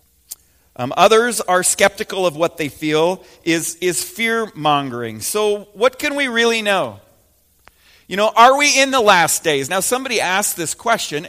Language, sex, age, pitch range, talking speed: English, male, 30-49, 130-195 Hz, 165 wpm